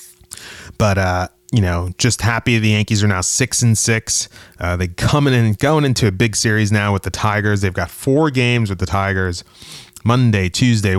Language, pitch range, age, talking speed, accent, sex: English, 95-115 Hz, 30-49, 190 wpm, American, male